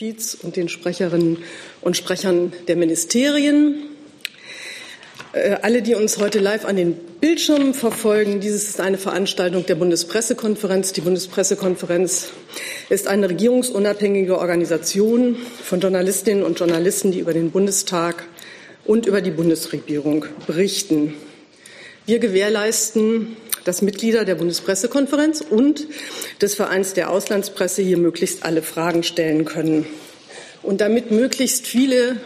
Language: German